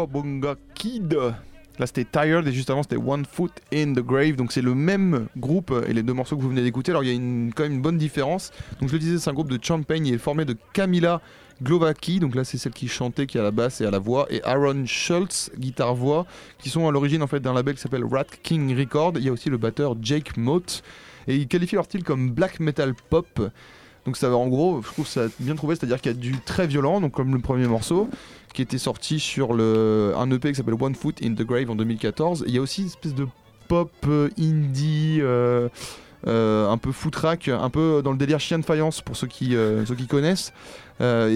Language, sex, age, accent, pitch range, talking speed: French, male, 20-39, French, 125-155 Hz, 250 wpm